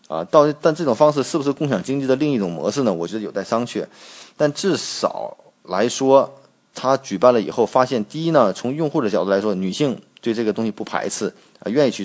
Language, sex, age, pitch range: Chinese, male, 30-49, 110-145 Hz